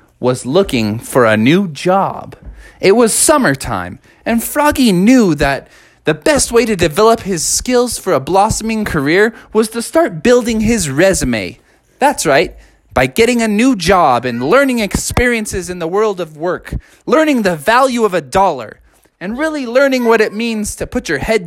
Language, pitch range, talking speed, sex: English, 180-250 Hz, 170 wpm, male